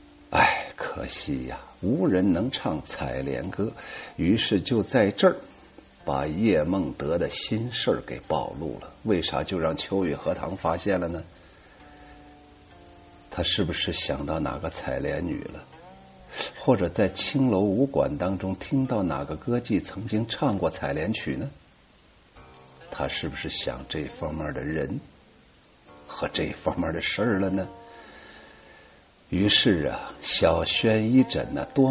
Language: Chinese